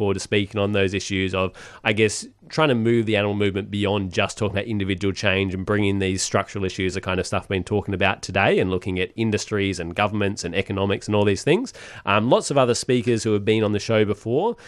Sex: male